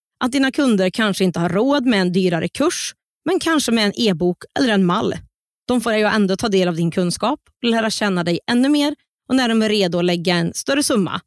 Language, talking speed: Swedish, 235 wpm